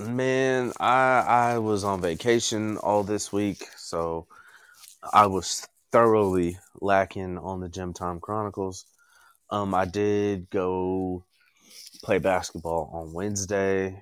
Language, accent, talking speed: English, American, 115 wpm